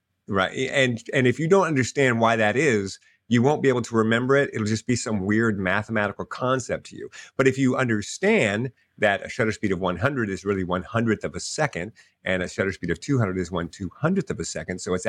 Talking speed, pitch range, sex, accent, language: 230 wpm, 100-135 Hz, male, American, English